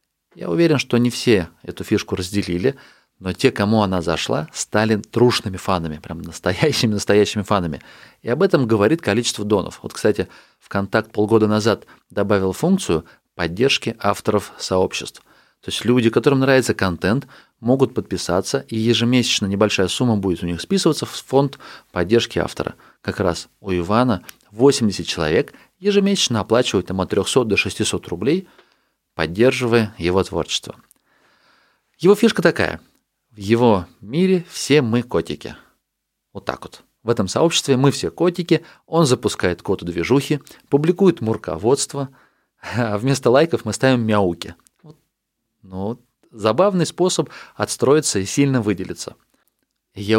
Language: Russian